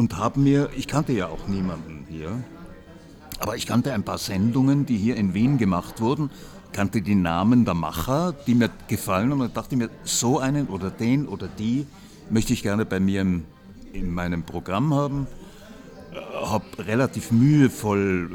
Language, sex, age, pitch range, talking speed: German, male, 60-79, 95-125 Hz, 165 wpm